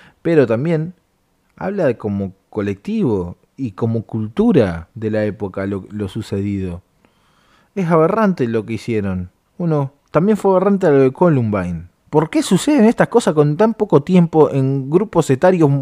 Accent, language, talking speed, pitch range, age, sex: Argentinian, Spanish, 150 wpm, 100-155 Hz, 20-39, male